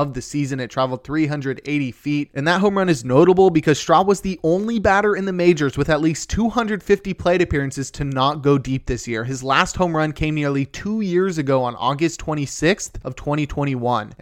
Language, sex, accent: English, male, American